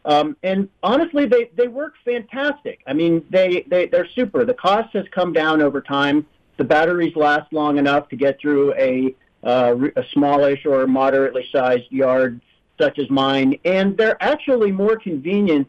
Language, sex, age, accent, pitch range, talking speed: English, male, 50-69, American, 145-225 Hz, 160 wpm